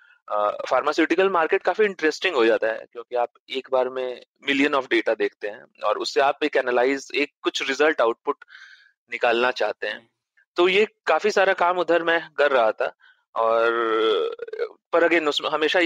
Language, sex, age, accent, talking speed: Hindi, male, 30-49, native, 160 wpm